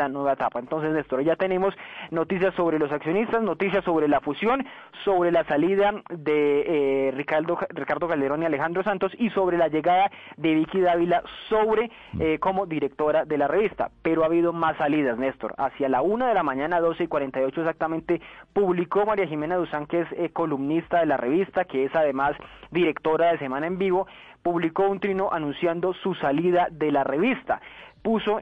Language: Spanish